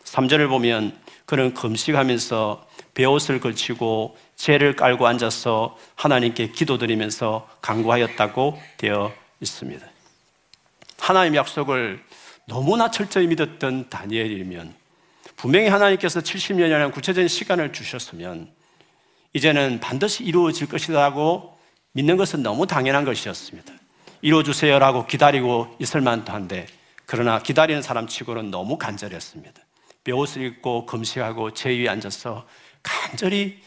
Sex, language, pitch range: male, Korean, 115-155 Hz